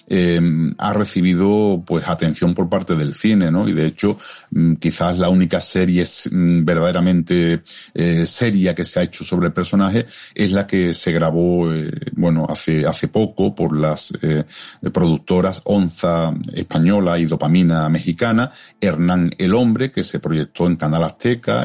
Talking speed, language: 150 wpm, Spanish